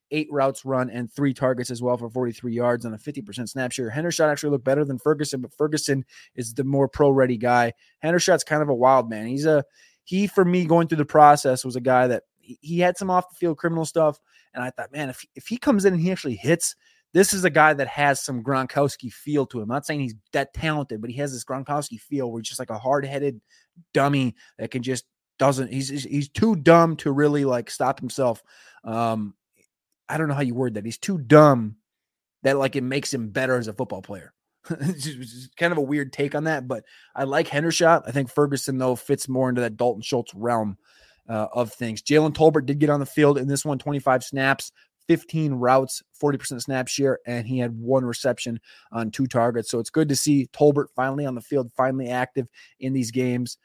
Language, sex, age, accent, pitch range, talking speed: English, male, 20-39, American, 125-150 Hz, 225 wpm